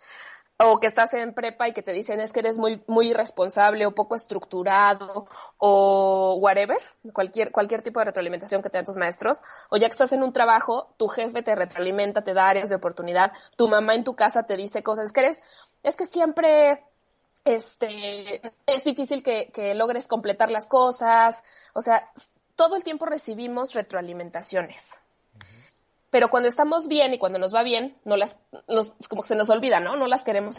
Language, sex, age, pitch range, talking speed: Spanish, female, 20-39, 195-250 Hz, 185 wpm